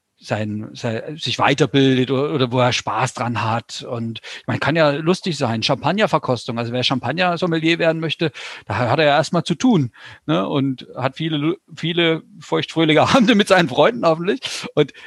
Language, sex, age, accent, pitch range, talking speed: German, male, 40-59, German, 135-180 Hz, 165 wpm